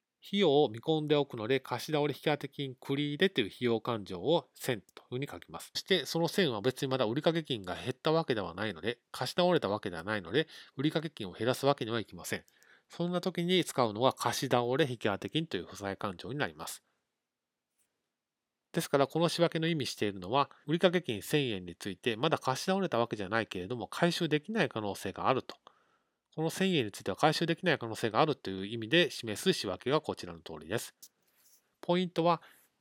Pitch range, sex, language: 115-160 Hz, male, Japanese